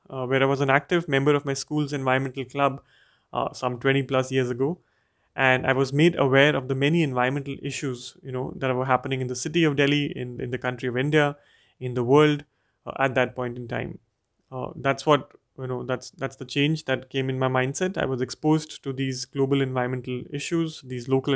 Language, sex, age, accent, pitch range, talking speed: English, male, 30-49, Indian, 125-145 Hz, 215 wpm